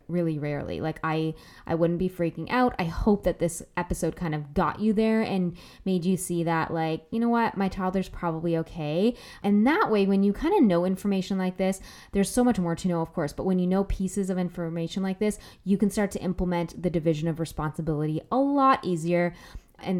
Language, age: English, 10-29